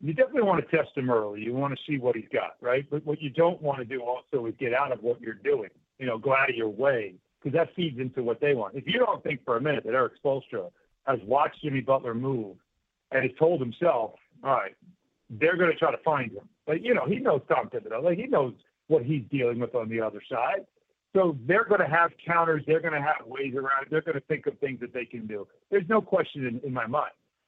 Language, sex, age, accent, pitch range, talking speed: English, male, 50-69, American, 130-175 Hz, 260 wpm